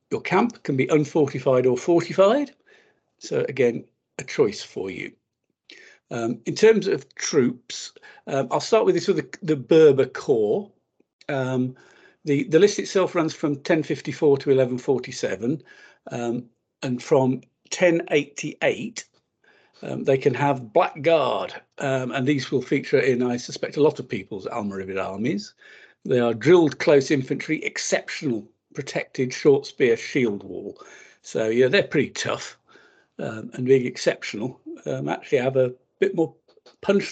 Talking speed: 145 wpm